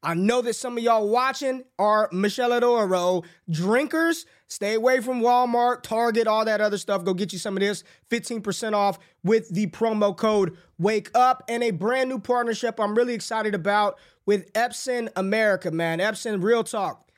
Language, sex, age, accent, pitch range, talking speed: English, male, 20-39, American, 205-245 Hz, 175 wpm